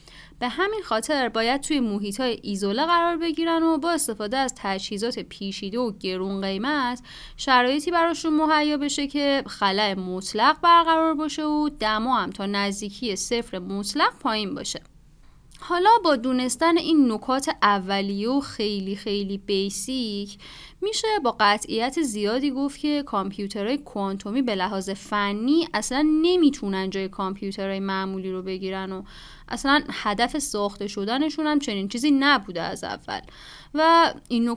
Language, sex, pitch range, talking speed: Persian, female, 200-300 Hz, 135 wpm